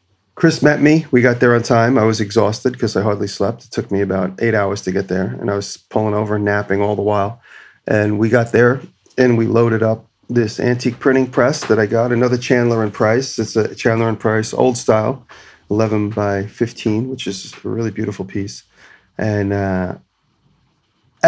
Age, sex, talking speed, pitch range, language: 40-59, male, 200 wpm, 100-120 Hz, English